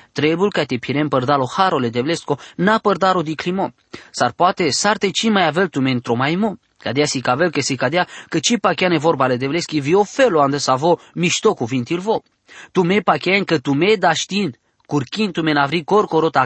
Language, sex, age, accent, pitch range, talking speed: English, male, 20-39, Romanian, 140-190 Hz, 185 wpm